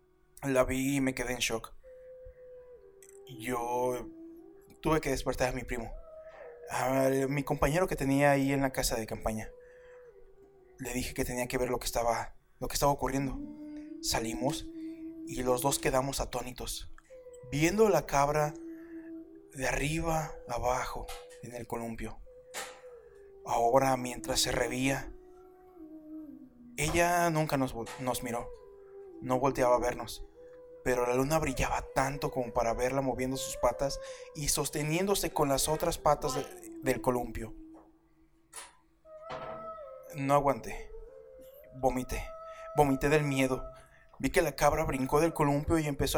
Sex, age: male, 20-39